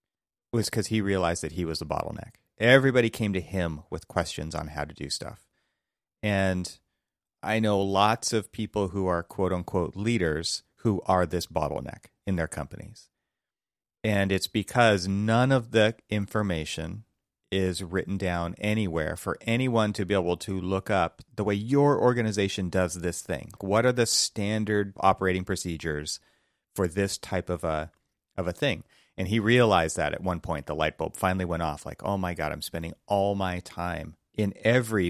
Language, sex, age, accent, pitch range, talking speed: English, male, 30-49, American, 85-105 Hz, 175 wpm